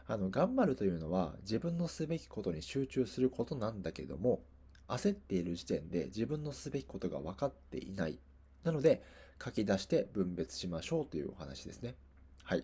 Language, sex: Japanese, male